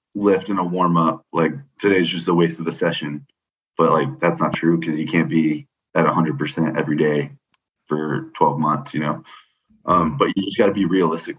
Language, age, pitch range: English, 20-39, 85-115 Hz